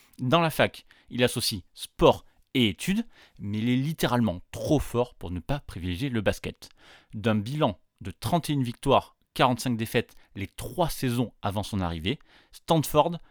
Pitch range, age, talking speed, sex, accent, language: 105-145 Hz, 30-49, 155 wpm, male, French, French